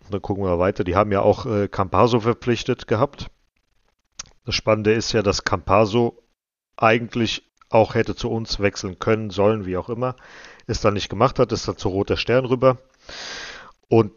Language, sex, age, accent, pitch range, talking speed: German, male, 40-59, German, 95-115 Hz, 170 wpm